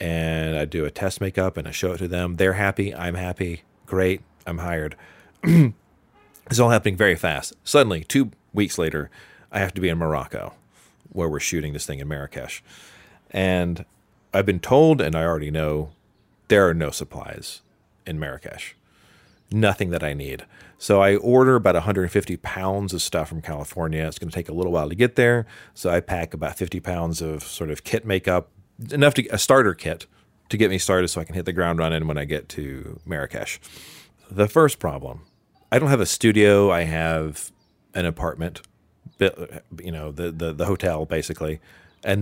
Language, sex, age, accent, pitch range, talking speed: English, male, 40-59, American, 80-100 Hz, 185 wpm